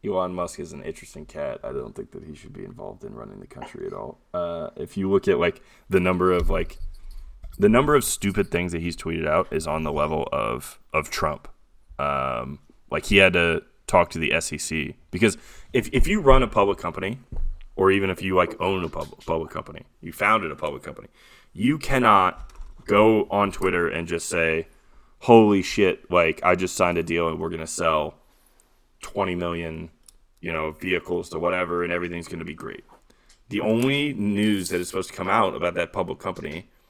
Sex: male